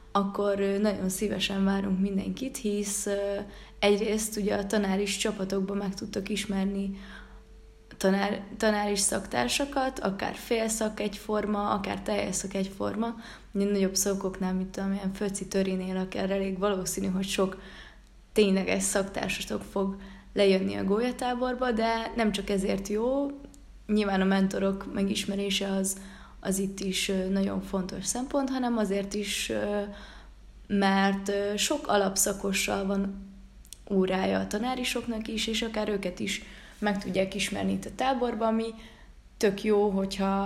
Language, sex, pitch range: Hungarian, female, 195-215 Hz